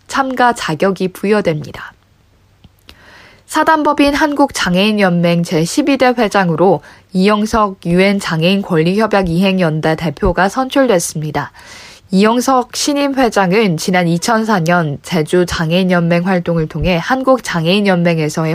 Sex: female